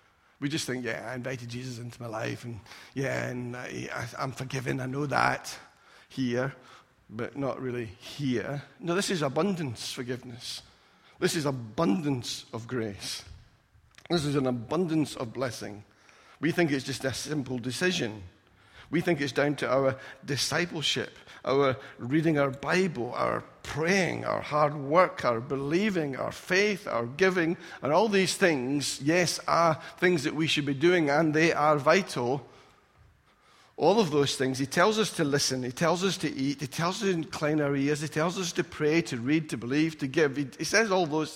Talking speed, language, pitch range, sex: 175 wpm, English, 125-160 Hz, male